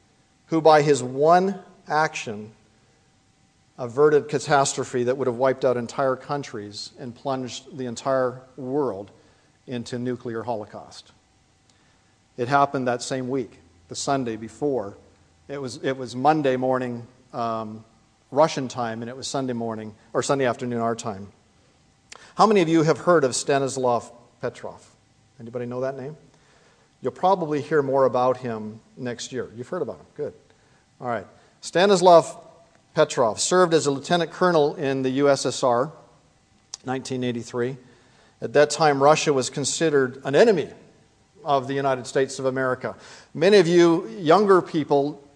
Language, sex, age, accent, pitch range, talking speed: English, male, 40-59, American, 120-150 Hz, 140 wpm